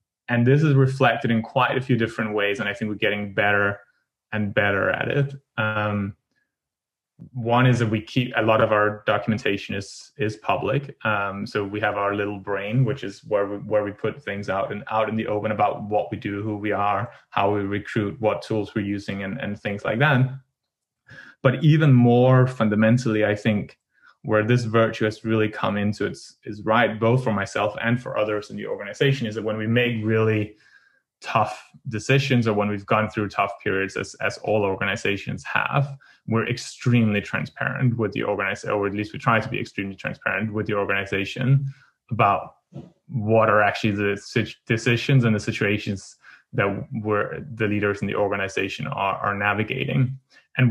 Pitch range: 105-125 Hz